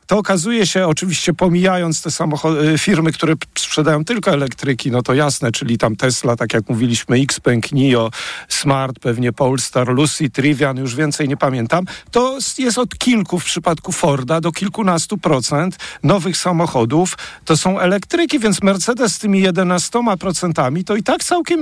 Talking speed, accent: 160 wpm, native